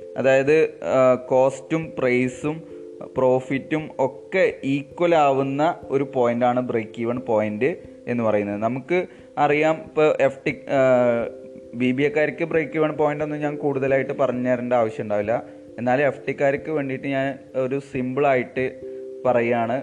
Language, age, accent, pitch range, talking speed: Malayalam, 20-39, native, 125-155 Hz, 110 wpm